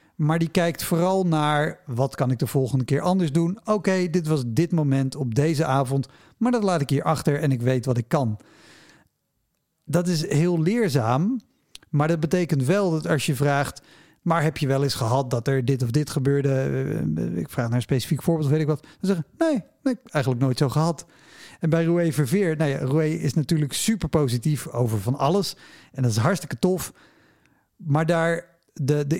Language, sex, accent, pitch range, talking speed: Dutch, male, Dutch, 140-175 Hz, 205 wpm